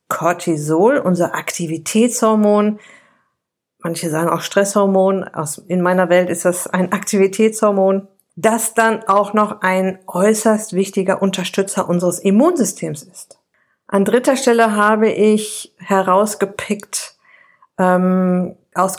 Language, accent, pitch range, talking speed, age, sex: German, German, 180-220 Hz, 100 wpm, 50-69, female